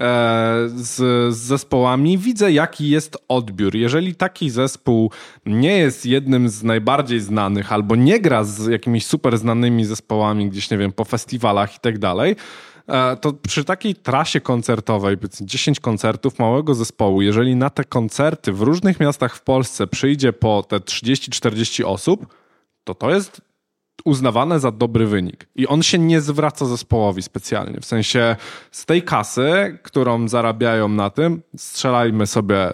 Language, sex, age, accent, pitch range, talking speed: Polish, male, 20-39, native, 105-135 Hz, 150 wpm